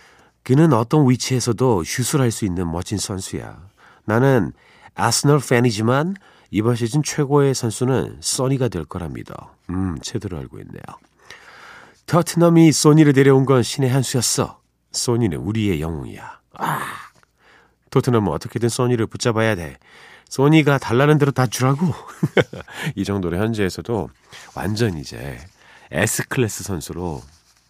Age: 40-59